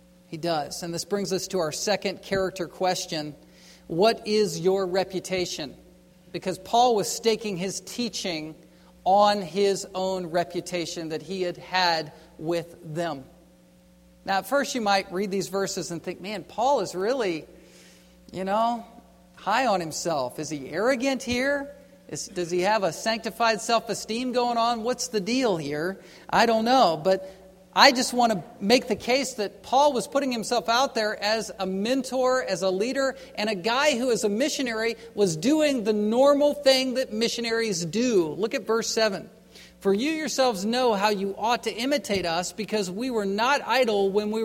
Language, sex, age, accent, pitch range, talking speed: English, male, 50-69, American, 180-235 Hz, 170 wpm